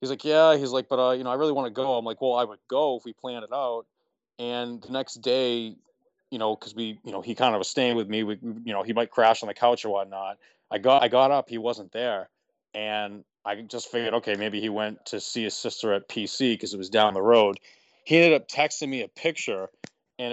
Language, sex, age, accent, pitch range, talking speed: English, male, 20-39, American, 115-135 Hz, 265 wpm